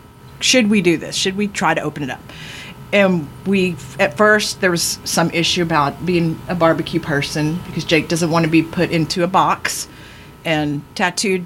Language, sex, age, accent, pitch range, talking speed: English, female, 40-59, American, 145-185 Hz, 190 wpm